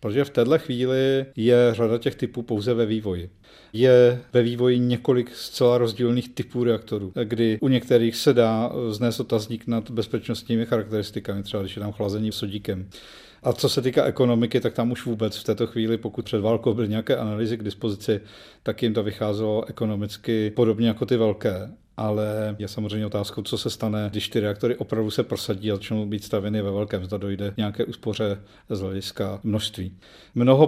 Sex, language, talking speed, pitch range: male, Czech, 180 wpm, 105-120 Hz